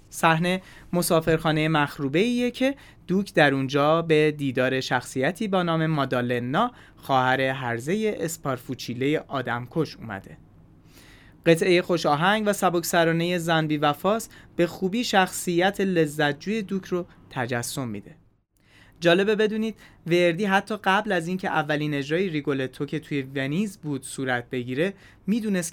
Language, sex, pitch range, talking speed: Persian, male, 135-185 Hz, 120 wpm